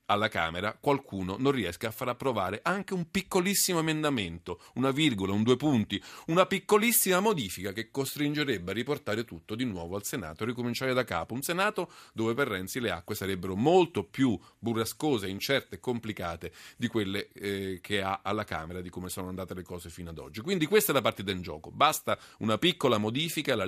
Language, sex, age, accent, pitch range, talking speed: Italian, male, 40-59, native, 115-155 Hz, 190 wpm